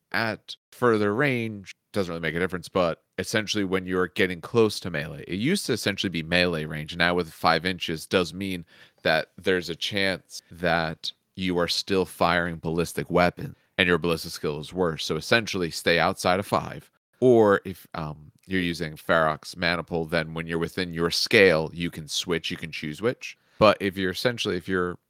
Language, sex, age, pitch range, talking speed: English, male, 30-49, 80-95 Hz, 185 wpm